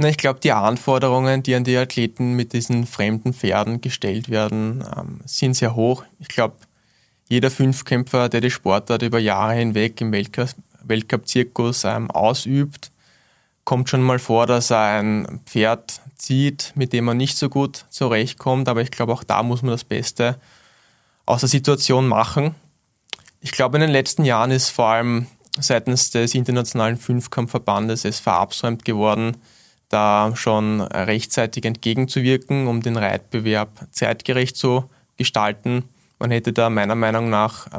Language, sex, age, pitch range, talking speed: German, male, 20-39, 110-130 Hz, 145 wpm